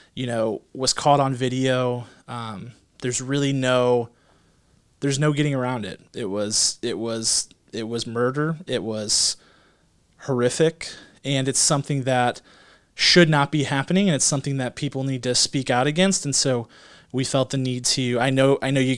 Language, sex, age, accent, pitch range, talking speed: English, male, 30-49, American, 120-145 Hz, 175 wpm